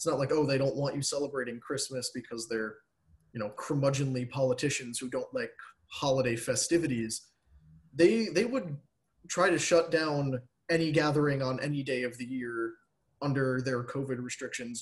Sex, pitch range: male, 125-160 Hz